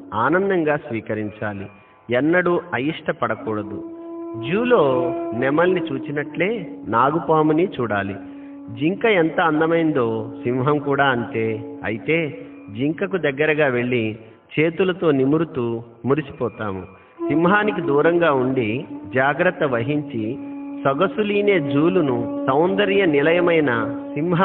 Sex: male